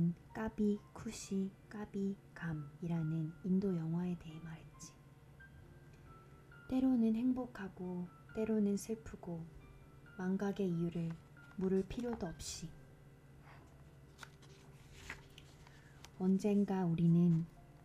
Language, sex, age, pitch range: Korean, female, 20-39, 145-195 Hz